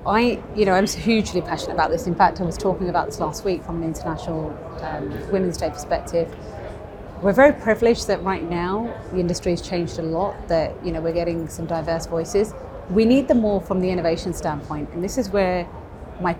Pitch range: 165-195 Hz